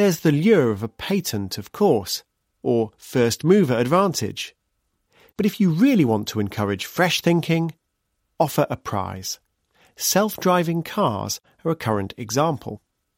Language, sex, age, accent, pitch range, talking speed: English, male, 40-59, British, 105-165 Hz, 130 wpm